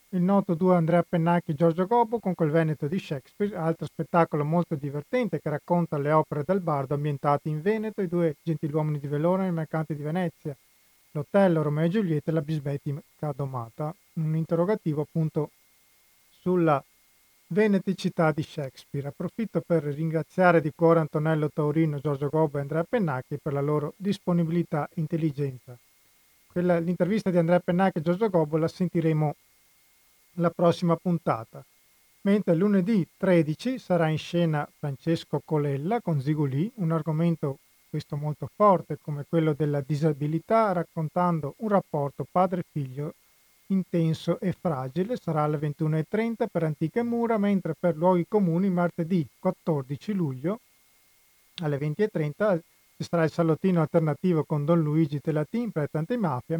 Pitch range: 150-180 Hz